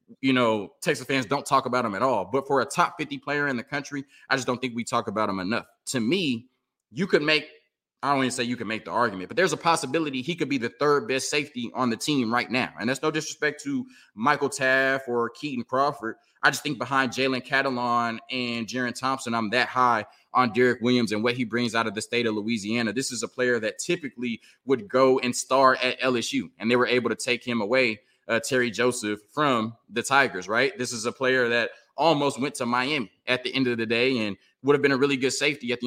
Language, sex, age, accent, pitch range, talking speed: English, male, 20-39, American, 115-135 Hz, 245 wpm